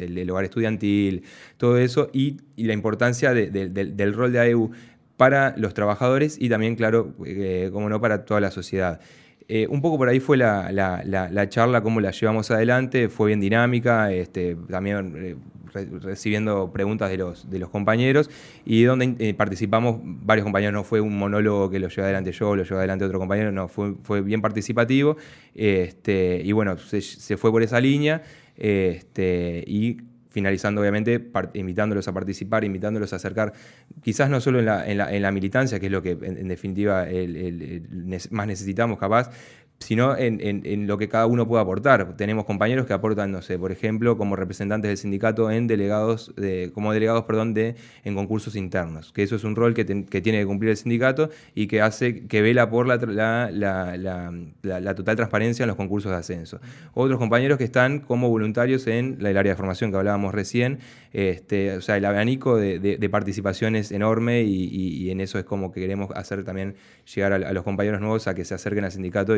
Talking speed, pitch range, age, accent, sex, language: 200 wpm, 95-115 Hz, 20-39, Argentinian, male, Spanish